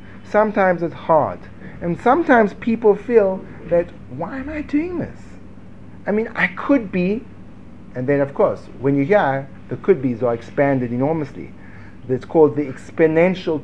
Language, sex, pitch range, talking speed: English, male, 135-205 Hz, 145 wpm